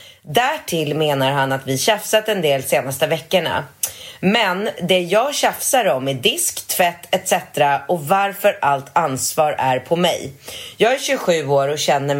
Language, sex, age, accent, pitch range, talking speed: Swedish, female, 30-49, native, 145-195 Hz, 165 wpm